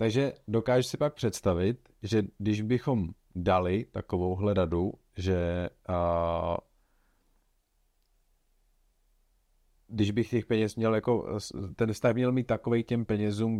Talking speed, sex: 115 wpm, male